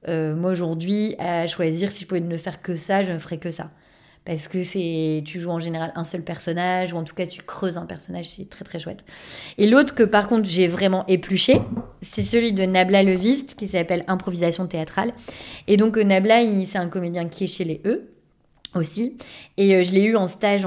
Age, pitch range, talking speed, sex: 20-39, 170-200 Hz, 220 wpm, female